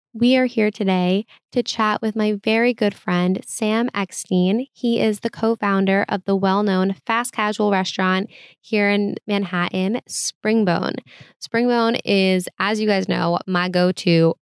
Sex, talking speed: female, 145 wpm